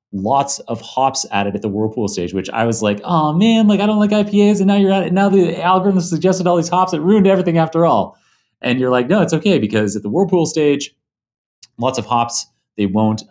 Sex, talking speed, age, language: male, 235 wpm, 30-49, English